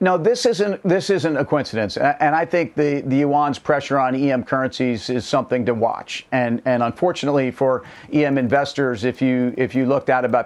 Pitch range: 125-145 Hz